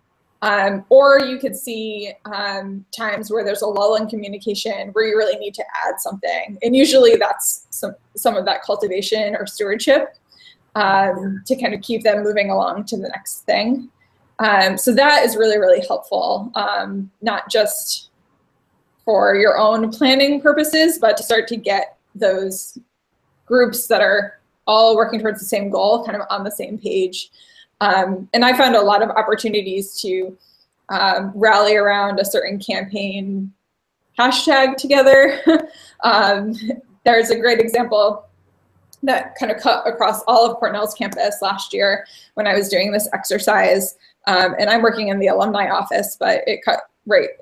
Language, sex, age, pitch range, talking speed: English, female, 20-39, 200-245 Hz, 165 wpm